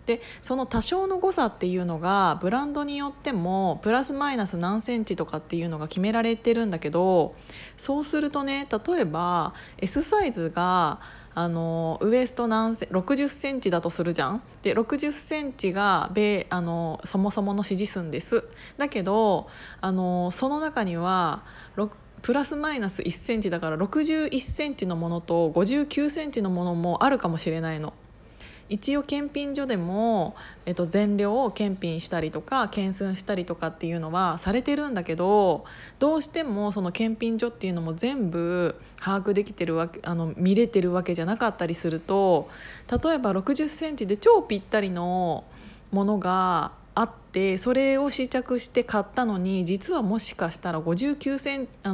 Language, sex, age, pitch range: Japanese, female, 20-39, 175-255 Hz